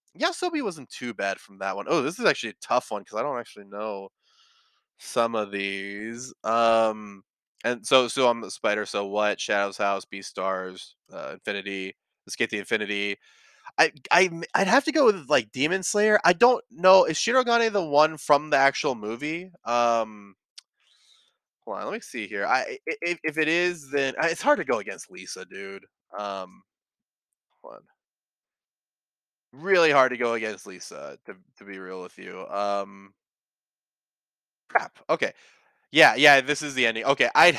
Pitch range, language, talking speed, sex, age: 100-155 Hz, English, 170 wpm, male, 20-39